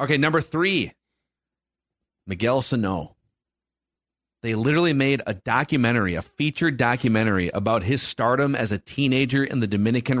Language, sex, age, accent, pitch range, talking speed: English, male, 30-49, American, 110-140 Hz, 130 wpm